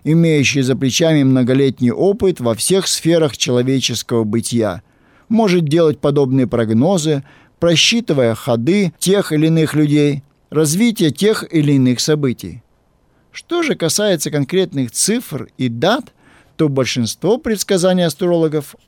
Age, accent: 50-69, native